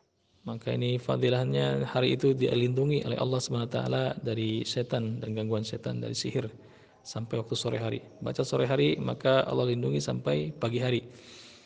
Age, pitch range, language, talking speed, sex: 50-69, 115-140 Hz, Malay, 155 wpm, male